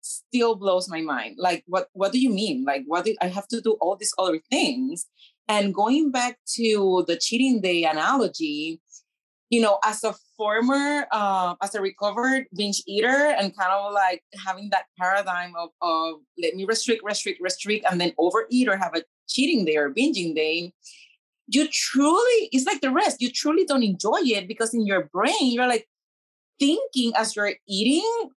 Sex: female